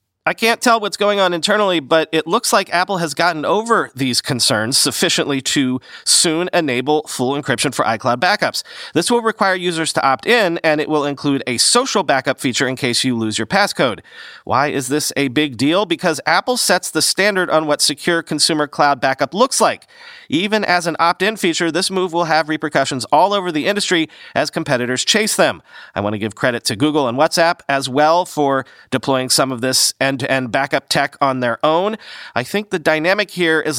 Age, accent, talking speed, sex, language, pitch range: 40-59, American, 200 wpm, male, English, 135-180 Hz